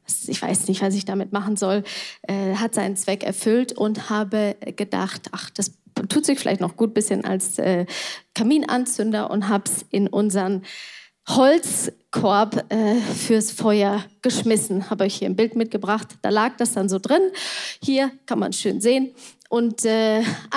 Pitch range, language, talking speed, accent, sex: 200-240 Hz, German, 170 wpm, German, female